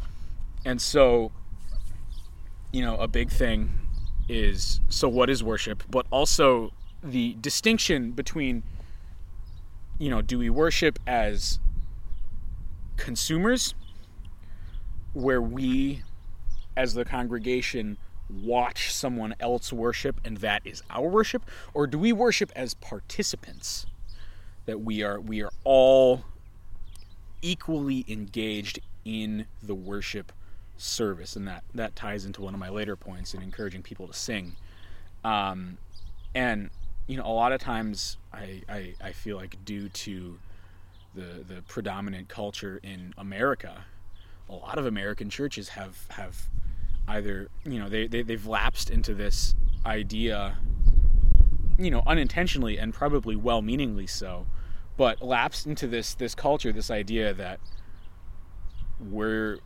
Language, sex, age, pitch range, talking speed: English, male, 30-49, 90-115 Hz, 130 wpm